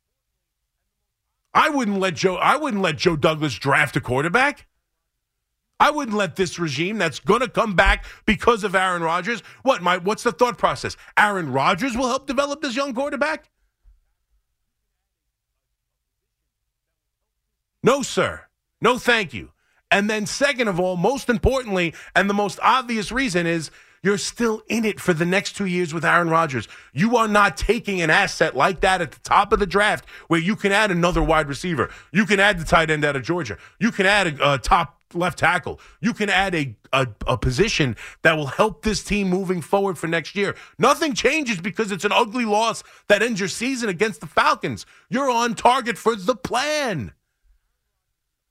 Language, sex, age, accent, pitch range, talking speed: English, male, 40-59, American, 170-230 Hz, 180 wpm